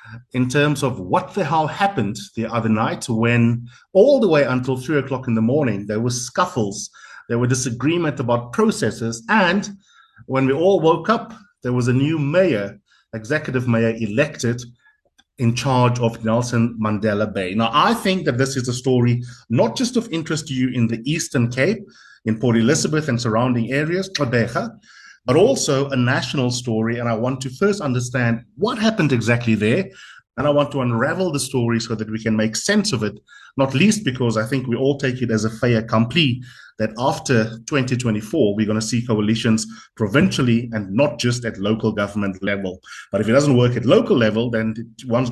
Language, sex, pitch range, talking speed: English, male, 115-145 Hz, 185 wpm